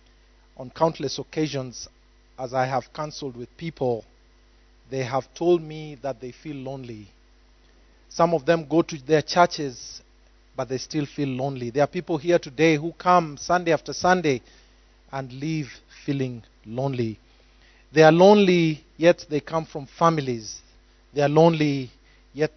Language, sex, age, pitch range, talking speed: English, male, 30-49, 120-170 Hz, 145 wpm